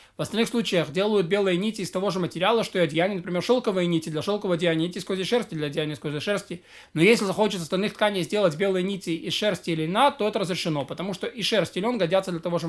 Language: Russian